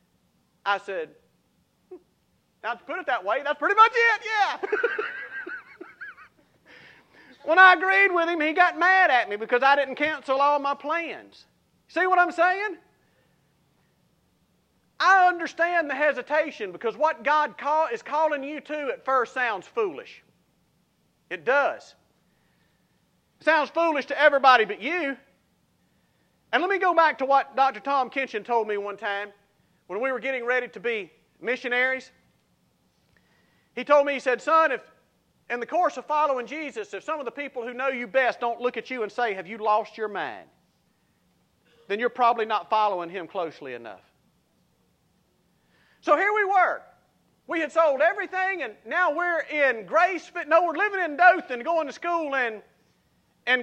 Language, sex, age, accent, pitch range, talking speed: English, male, 50-69, American, 245-340 Hz, 160 wpm